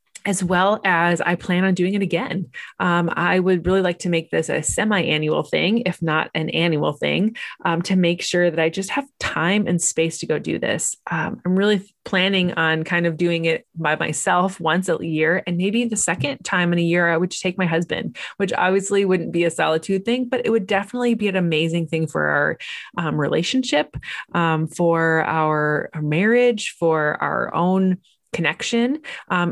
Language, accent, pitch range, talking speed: English, American, 165-200 Hz, 195 wpm